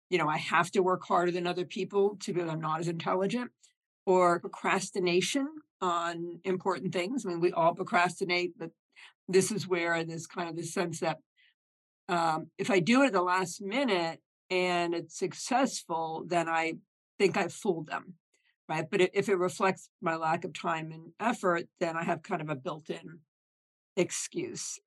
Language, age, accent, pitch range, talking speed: English, 50-69, American, 165-195 Hz, 180 wpm